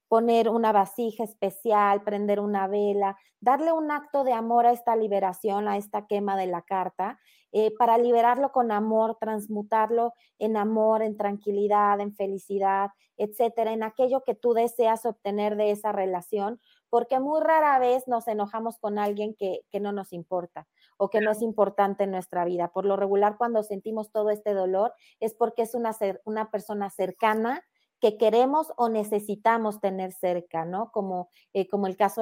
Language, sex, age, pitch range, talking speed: Spanish, female, 30-49, 200-230 Hz, 170 wpm